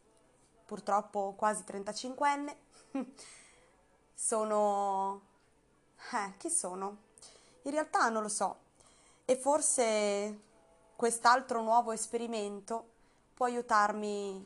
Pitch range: 205-245 Hz